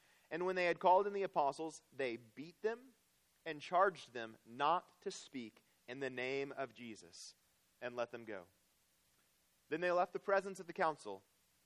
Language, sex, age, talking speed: English, male, 30-49, 175 wpm